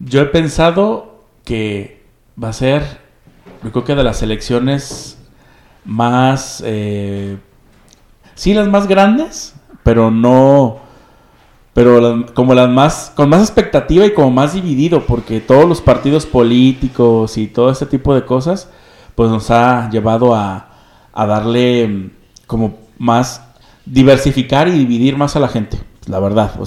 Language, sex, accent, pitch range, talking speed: Spanish, male, Mexican, 110-140 Hz, 140 wpm